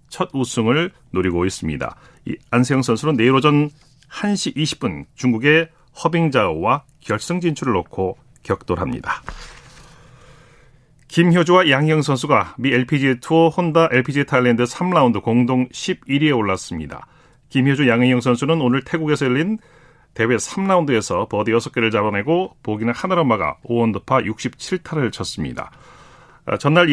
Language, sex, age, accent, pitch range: Korean, male, 40-59, native, 115-155 Hz